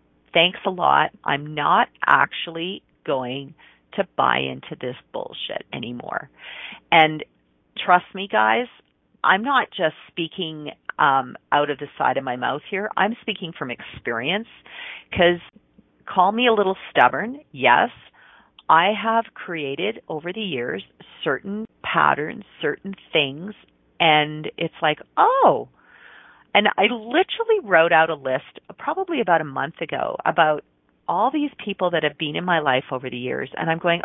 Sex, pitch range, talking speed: female, 140-195 Hz, 145 wpm